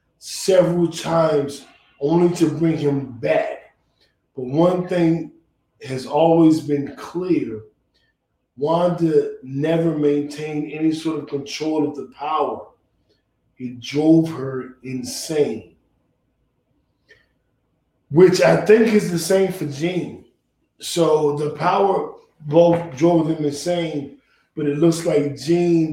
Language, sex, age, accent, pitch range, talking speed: English, male, 20-39, American, 145-190 Hz, 110 wpm